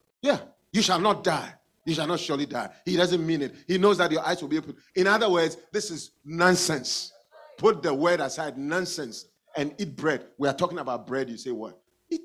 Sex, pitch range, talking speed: male, 125-185 Hz, 215 wpm